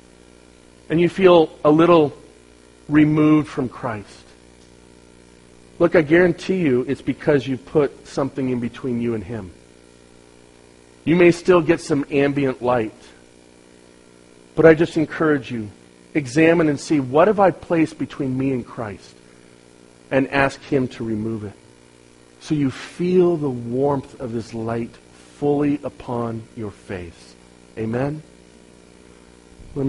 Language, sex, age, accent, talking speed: English, male, 40-59, American, 135 wpm